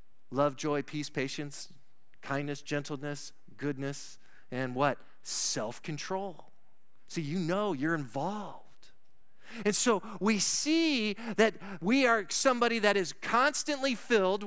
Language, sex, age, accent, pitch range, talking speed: English, male, 40-59, American, 165-230 Hz, 110 wpm